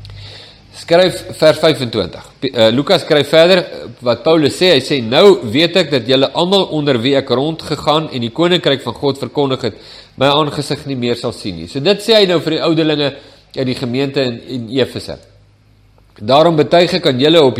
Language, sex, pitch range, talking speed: English, male, 120-155 Hz, 185 wpm